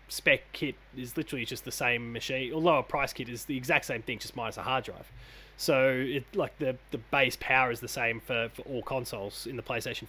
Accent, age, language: Australian, 20-39, English